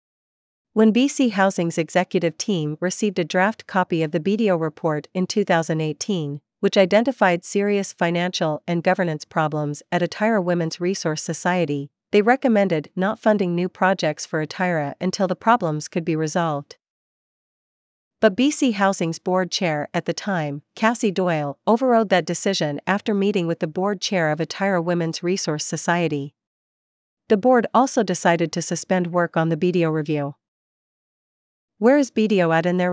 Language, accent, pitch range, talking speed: English, American, 160-200 Hz, 150 wpm